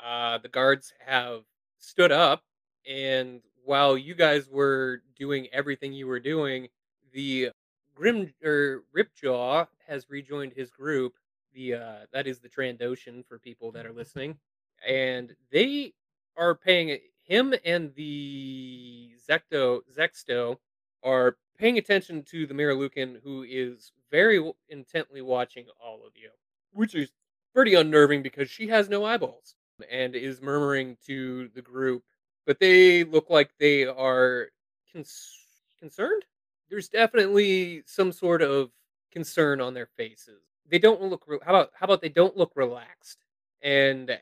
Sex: male